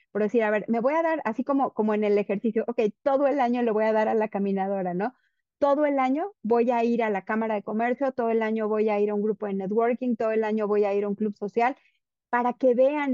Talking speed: 280 wpm